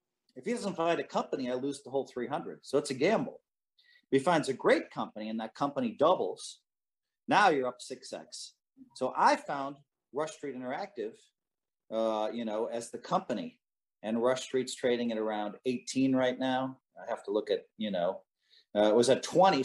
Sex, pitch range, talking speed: male, 115-180 Hz, 195 wpm